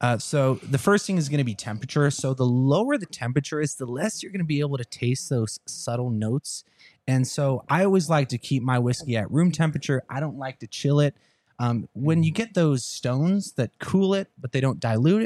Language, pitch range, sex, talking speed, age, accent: English, 125-165 Hz, male, 230 wpm, 20-39, American